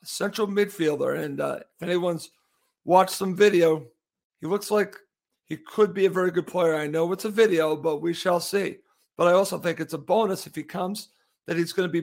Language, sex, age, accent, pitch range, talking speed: English, male, 50-69, American, 170-195 Hz, 215 wpm